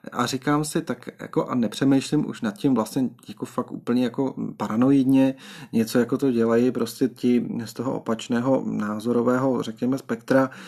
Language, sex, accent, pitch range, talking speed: Czech, male, native, 120-155 Hz, 155 wpm